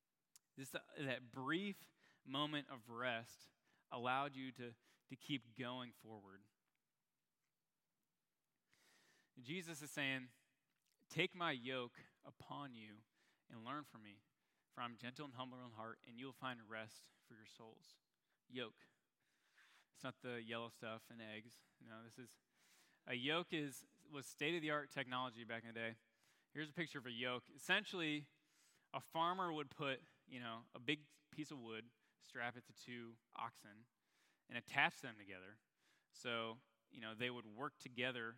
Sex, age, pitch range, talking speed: male, 20-39, 115-145 Hz, 155 wpm